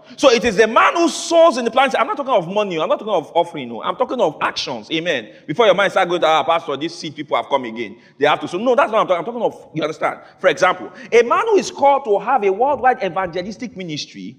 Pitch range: 180-285 Hz